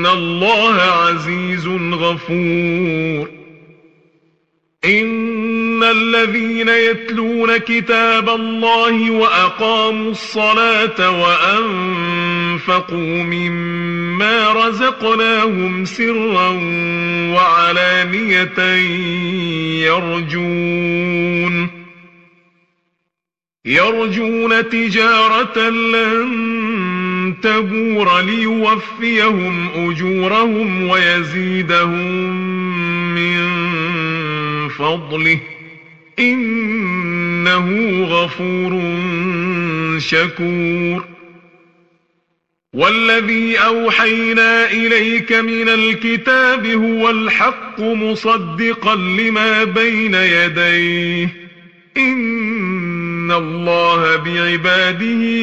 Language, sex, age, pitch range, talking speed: Arabic, male, 40-59, 175-225 Hz, 45 wpm